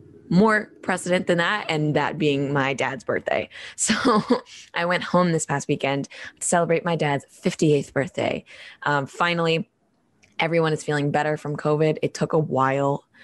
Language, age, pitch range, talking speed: English, 20-39, 140-170 Hz, 160 wpm